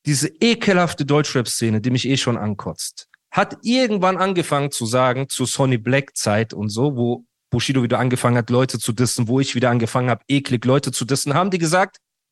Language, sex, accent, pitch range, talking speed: German, male, German, 130-175 Hz, 185 wpm